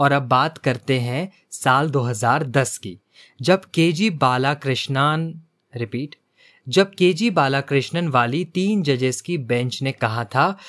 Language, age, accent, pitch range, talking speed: Hindi, 20-39, native, 125-175 Hz, 140 wpm